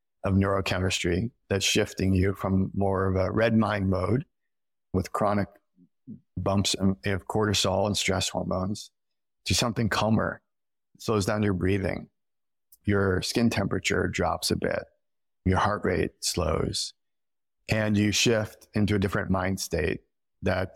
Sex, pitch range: male, 95-105 Hz